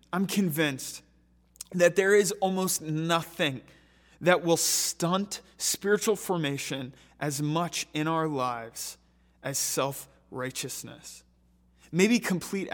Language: English